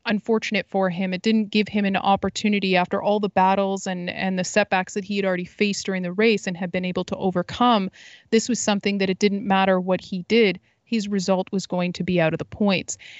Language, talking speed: English, 230 wpm